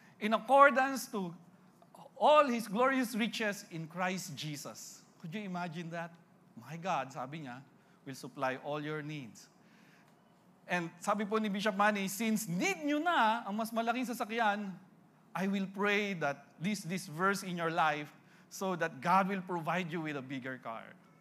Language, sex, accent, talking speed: English, male, Filipino, 160 wpm